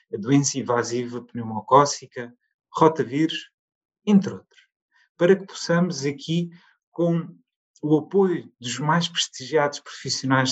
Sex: male